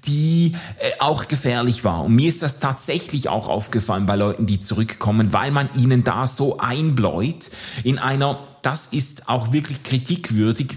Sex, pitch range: male, 115-145 Hz